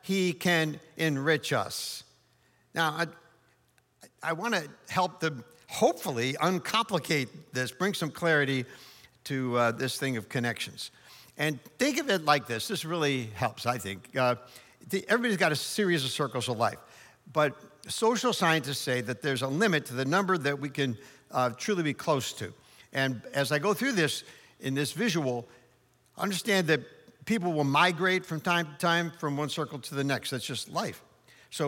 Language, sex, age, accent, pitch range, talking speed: English, male, 60-79, American, 135-180 Hz, 170 wpm